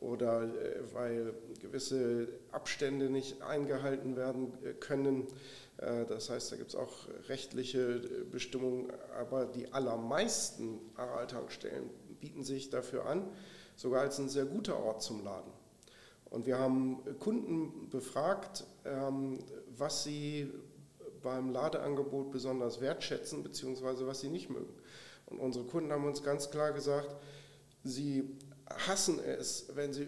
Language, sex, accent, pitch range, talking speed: German, male, German, 130-145 Hz, 120 wpm